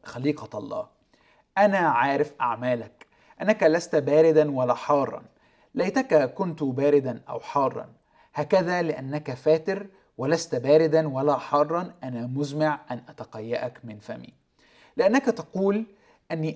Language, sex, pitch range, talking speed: Arabic, male, 130-165 Hz, 110 wpm